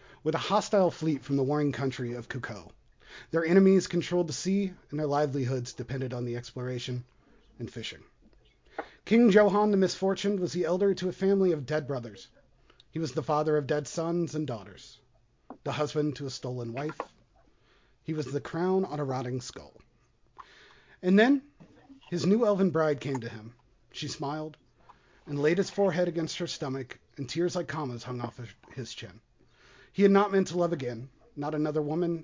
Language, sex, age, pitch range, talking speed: English, male, 30-49, 125-175 Hz, 180 wpm